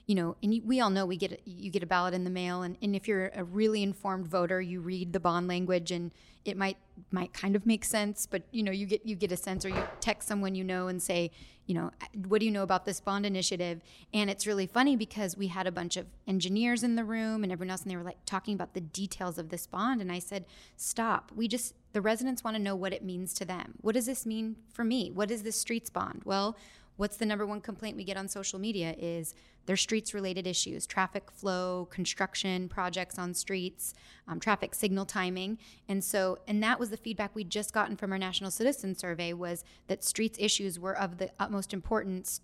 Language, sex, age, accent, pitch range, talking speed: English, female, 20-39, American, 185-215 Hz, 240 wpm